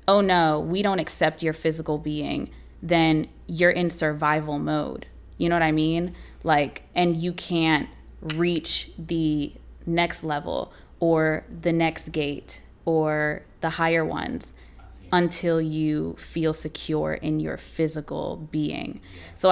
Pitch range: 155-180 Hz